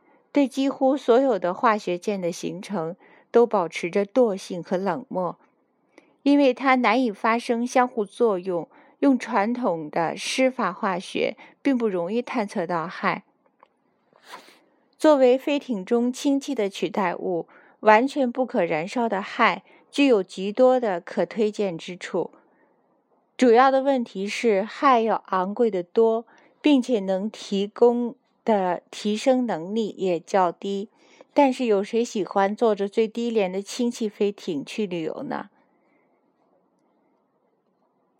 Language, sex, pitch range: Chinese, female, 195-255 Hz